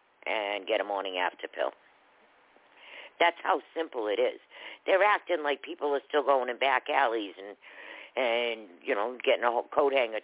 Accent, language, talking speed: American, English, 170 wpm